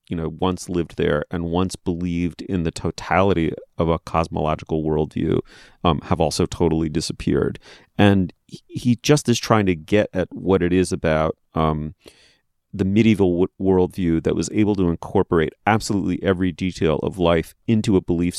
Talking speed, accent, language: 160 wpm, American, English